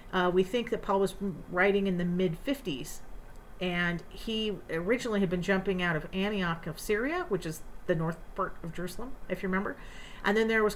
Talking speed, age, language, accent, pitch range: 200 wpm, 40-59, English, American, 175-210 Hz